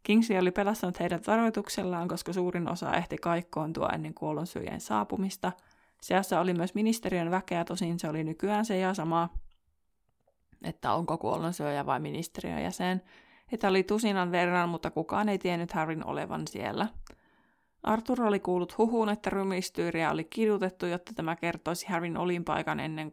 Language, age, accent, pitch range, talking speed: Finnish, 20-39, native, 170-200 Hz, 145 wpm